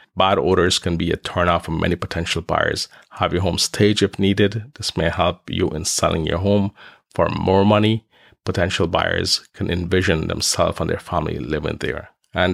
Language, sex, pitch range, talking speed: English, male, 90-105 Hz, 180 wpm